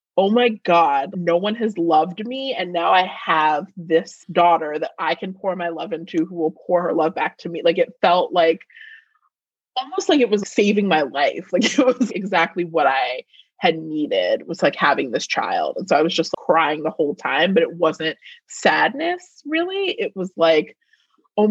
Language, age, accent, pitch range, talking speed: English, 20-39, American, 165-250 Hz, 200 wpm